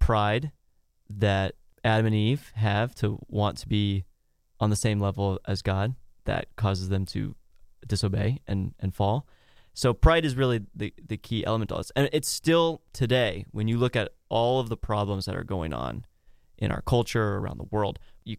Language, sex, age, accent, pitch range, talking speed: English, male, 30-49, American, 100-120 Hz, 185 wpm